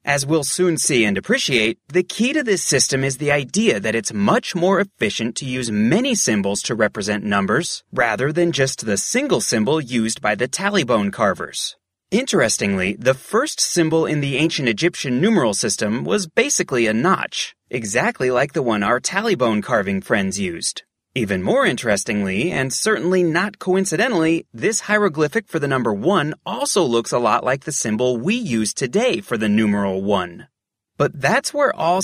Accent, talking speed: American, 170 wpm